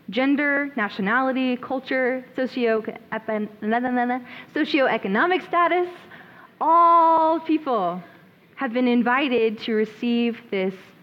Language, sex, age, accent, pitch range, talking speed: English, female, 20-39, American, 215-280 Hz, 70 wpm